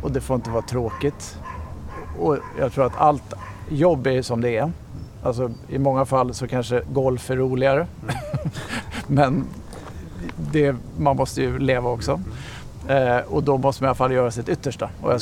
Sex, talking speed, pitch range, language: male, 180 wpm, 110-130 Hz, Swedish